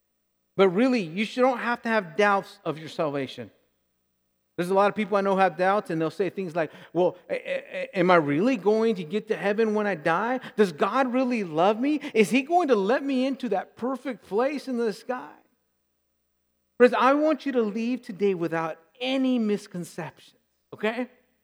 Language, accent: English, American